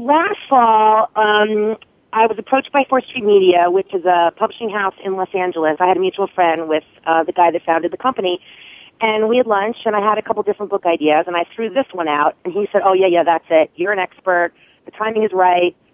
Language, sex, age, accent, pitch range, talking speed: English, female, 30-49, American, 180-240 Hz, 240 wpm